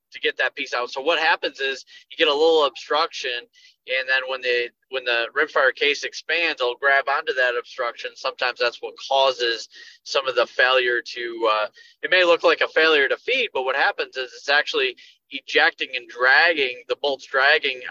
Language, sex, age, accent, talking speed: English, male, 20-39, American, 200 wpm